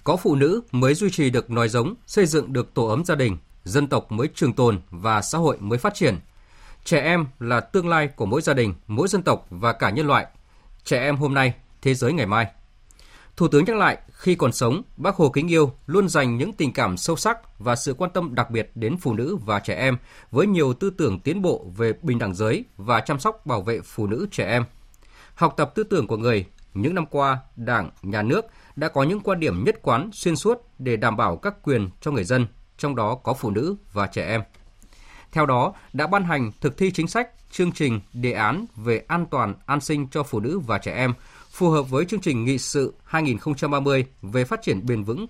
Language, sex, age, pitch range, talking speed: Vietnamese, male, 20-39, 115-160 Hz, 230 wpm